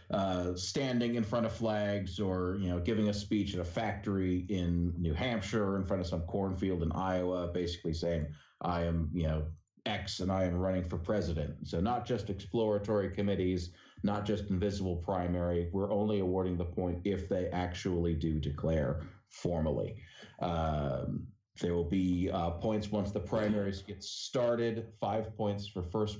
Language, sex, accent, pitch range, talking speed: English, male, American, 90-105 Hz, 170 wpm